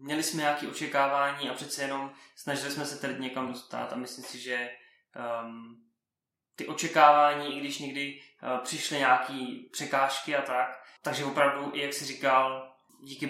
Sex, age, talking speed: male, 20-39, 160 wpm